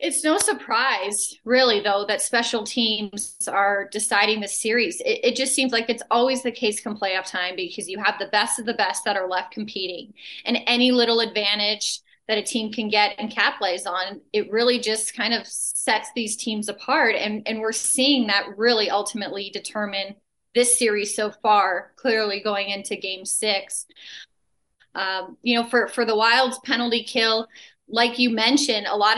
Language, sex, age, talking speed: English, female, 30-49, 185 wpm